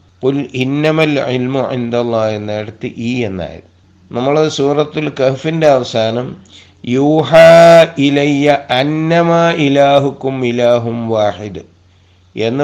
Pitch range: 105-140 Hz